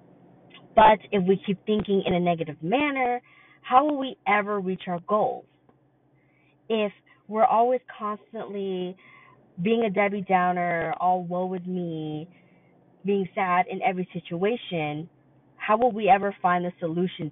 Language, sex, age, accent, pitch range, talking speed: English, female, 20-39, American, 160-210 Hz, 140 wpm